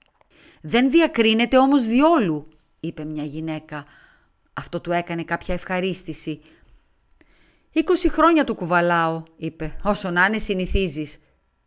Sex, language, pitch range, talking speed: female, Greek, 155-220 Hz, 105 wpm